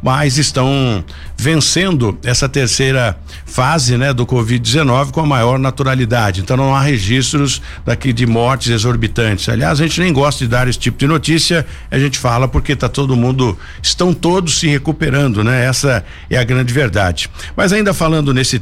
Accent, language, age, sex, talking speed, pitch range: Brazilian, Portuguese, 60-79, male, 170 wpm, 125-160 Hz